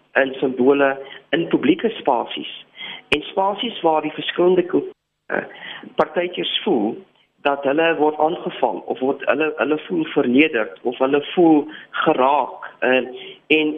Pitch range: 135-175 Hz